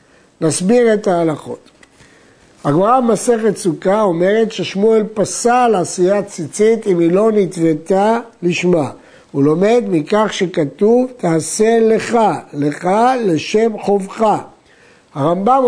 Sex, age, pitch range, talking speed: male, 60-79, 165-220 Hz, 100 wpm